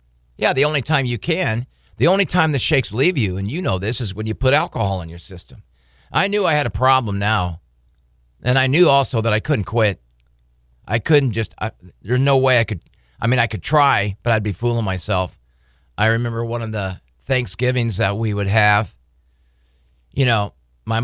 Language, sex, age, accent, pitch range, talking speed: English, male, 50-69, American, 70-120 Hz, 205 wpm